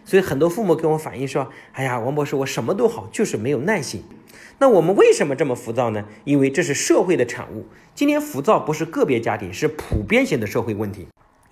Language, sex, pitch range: Chinese, male, 120-180 Hz